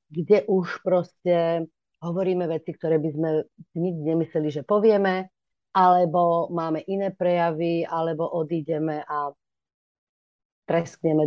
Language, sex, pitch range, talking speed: Slovak, female, 170-200 Hz, 105 wpm